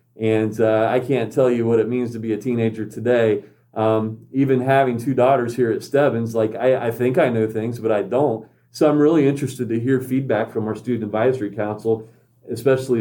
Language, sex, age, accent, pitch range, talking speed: English, male, 40-59, American, 110-130 Hz, 210 wpm